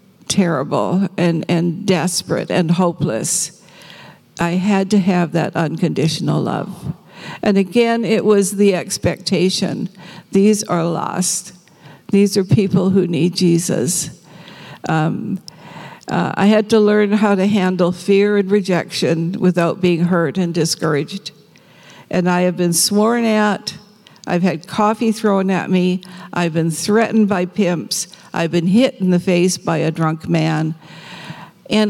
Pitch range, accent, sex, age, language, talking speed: 175-205 Hz, American, female, 60-79, English, 135 wpm